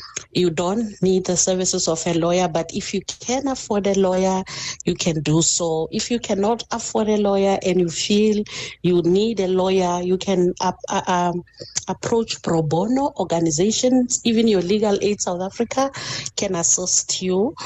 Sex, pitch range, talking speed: female, 175-230 Hz, 165 wpm